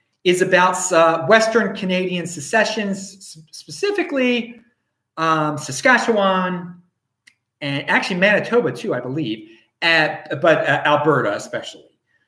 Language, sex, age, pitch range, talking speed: English, male, 30-49, 135-230 Hz, 100 wpm